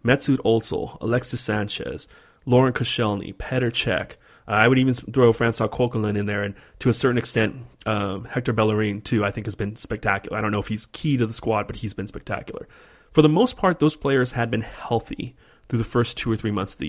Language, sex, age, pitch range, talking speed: English, male, 30-49, 115-145 Hz, 220 wpm